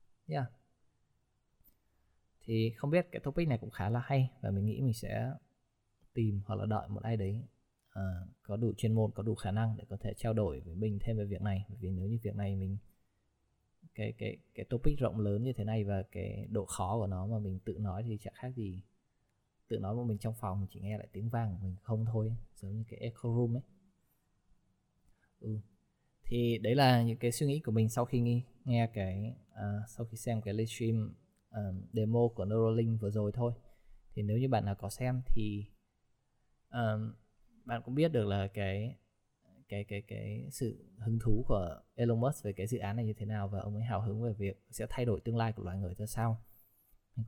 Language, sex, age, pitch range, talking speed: Vietnamese, male, 20-39, 105-120 Hz, 220 wpm